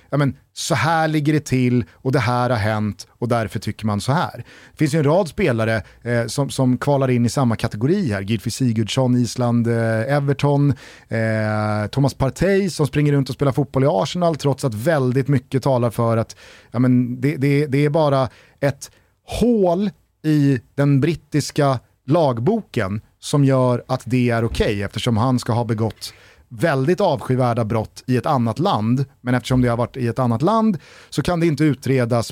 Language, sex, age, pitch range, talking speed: Swedish, male, 30-49, 115-150 Hz, 190 wpm